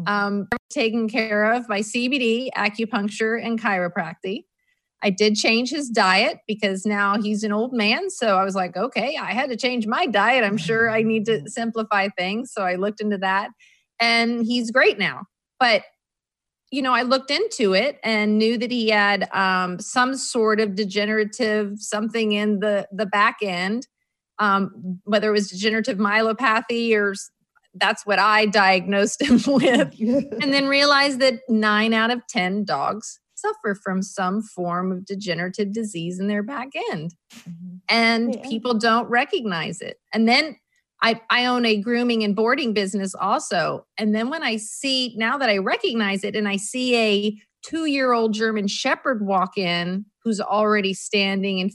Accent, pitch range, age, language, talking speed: American, 200-240 Hz, 30-49, English, 165 wpm